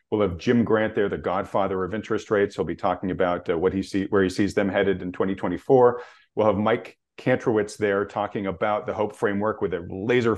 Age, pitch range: 40-59, 95-115 Hz